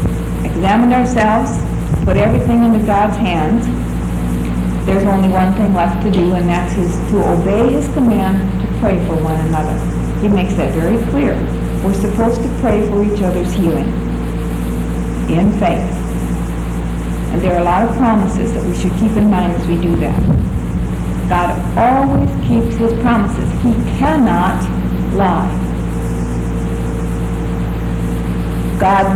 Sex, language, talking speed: female, English, 135 wpm